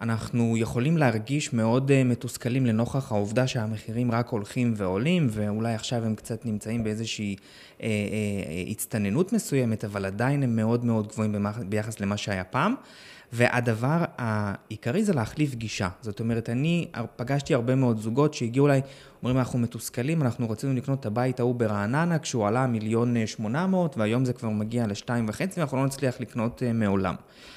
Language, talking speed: Hebrew, 155 wpm